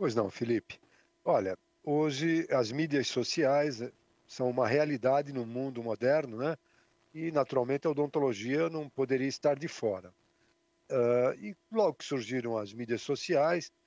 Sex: male